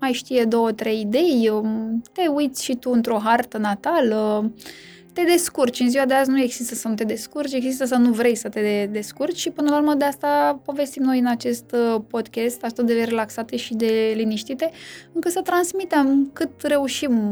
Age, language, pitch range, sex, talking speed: 20-39, Romanian, 230-285 Hz, female, 185 wpm